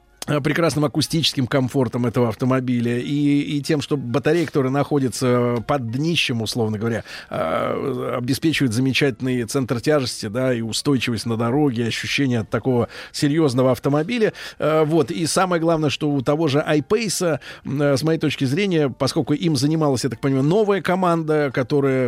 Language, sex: Russian, male